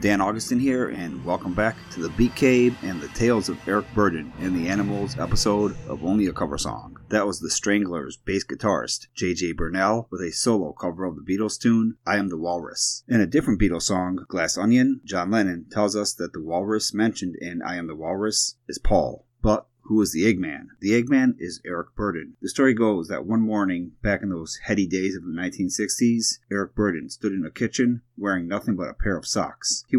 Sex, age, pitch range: male, 30-49, 95-115 Hz